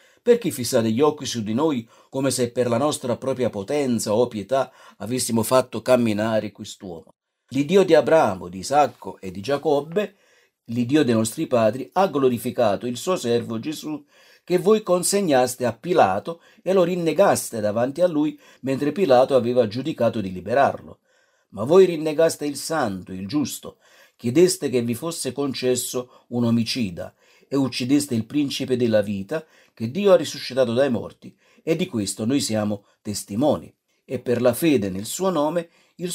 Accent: native